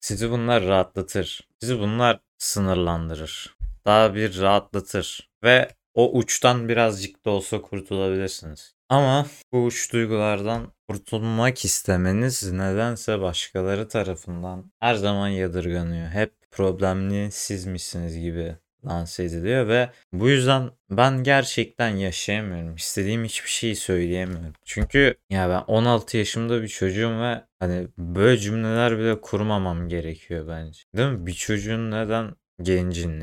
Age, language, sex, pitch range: 30-49, Turkish, male, 90-115 Hz